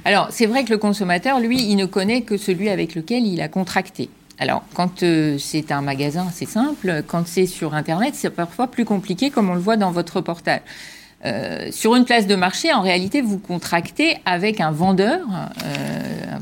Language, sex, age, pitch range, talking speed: French, female, 50-69, 155-200 Hz, 200 wpm